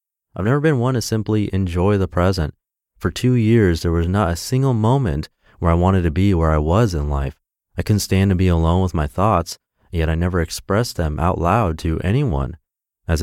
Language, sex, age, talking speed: English, male, 30-49, 215 wpm